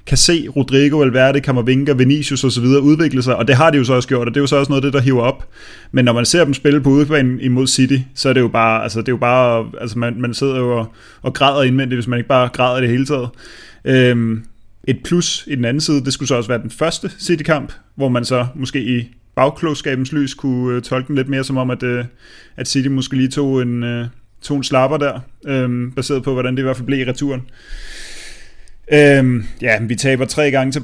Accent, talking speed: native, 235 wpm